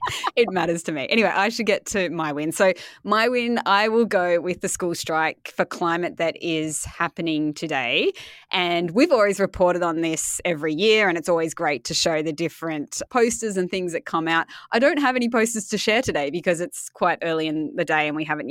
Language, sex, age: English, female, 20-39